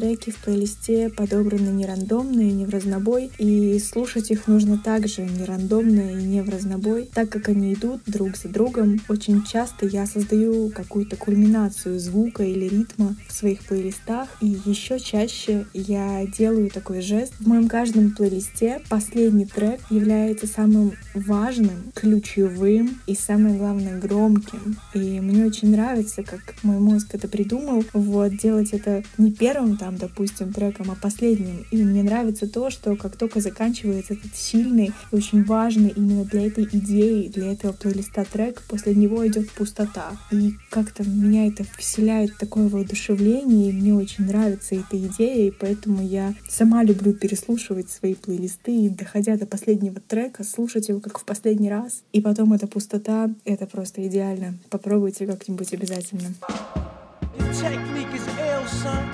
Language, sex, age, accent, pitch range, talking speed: Russian, female, 20-39, native, 200-220 Hz, 150 wpm